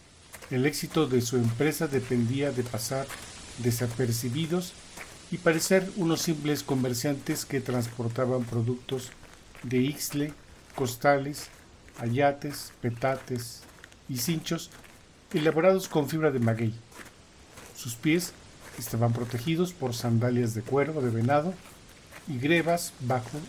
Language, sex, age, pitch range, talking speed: Spanish, male, 50-69, 125-150 Hz, 105 wpm